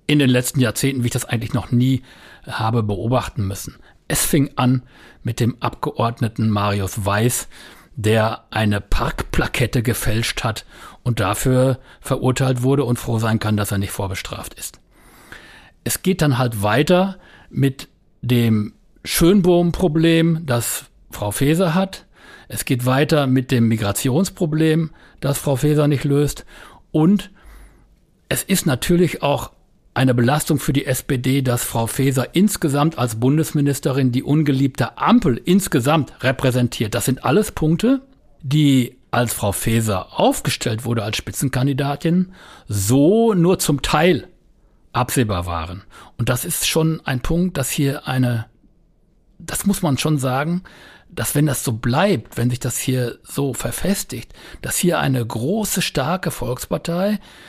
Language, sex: German, male